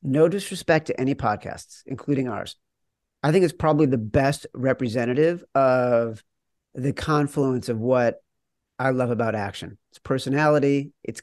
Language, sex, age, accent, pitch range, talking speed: English, male, 40-59, American, 130-160 Hz, 140 wpm